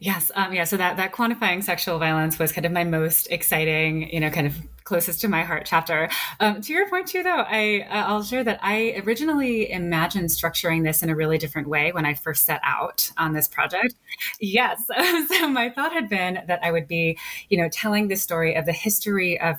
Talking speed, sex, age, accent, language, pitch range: 220 wpm, female, 20-39, American, English, 160-200 Hz